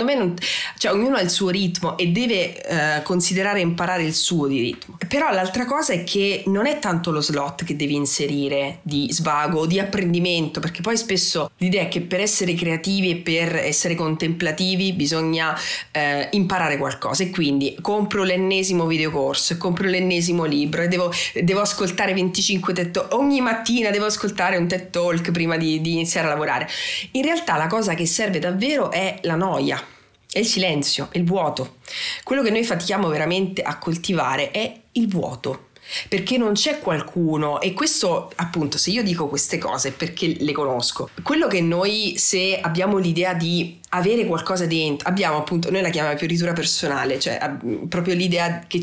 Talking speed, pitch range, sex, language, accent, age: 175 wpm, 160-195 Hz, female, Italian, native, 30-49